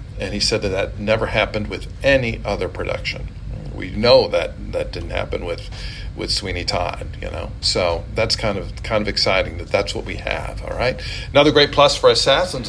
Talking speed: 200 wpm